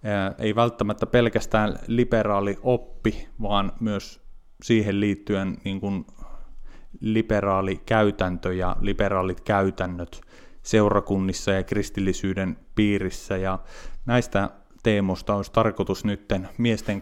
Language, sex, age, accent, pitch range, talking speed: Finnish, male, 30-49, native, 95-115 Hz, 90 wpm